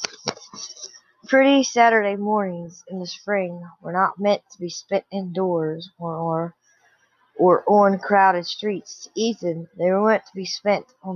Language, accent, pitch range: English, American, 155-200 Hz